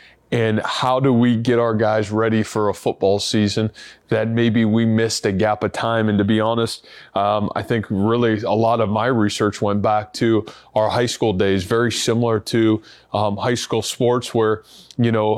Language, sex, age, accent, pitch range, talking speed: English, male, 20-39, American, 110-120 Hz, 195 wpm